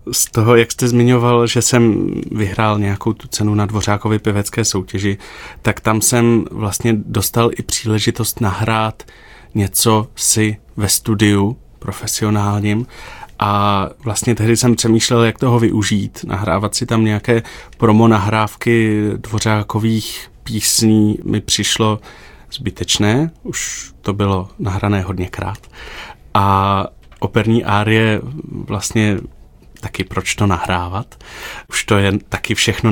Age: 30-49